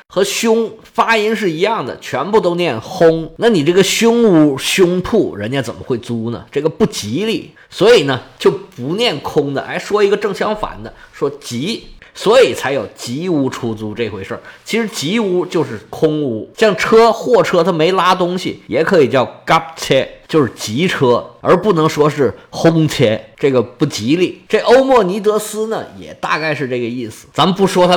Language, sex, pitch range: Chinese, male, 135-215 Hz